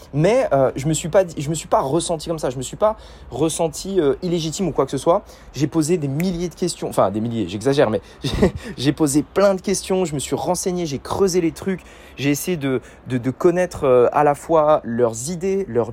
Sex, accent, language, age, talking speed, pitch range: male, French, French, 20-39, 235 wpm, 130-175 Hz